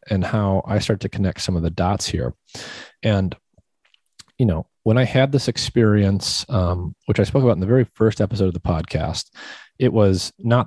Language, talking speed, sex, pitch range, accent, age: English, 195 wpm, male, 95-115 Hz, American, 30-49